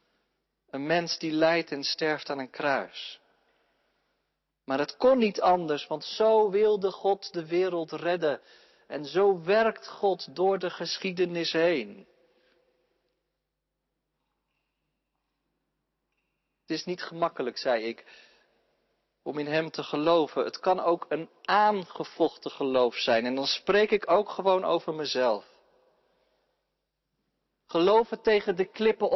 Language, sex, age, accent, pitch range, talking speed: Dutch, male, 40-59, Dutch, 160-220 Hz, 120 wpm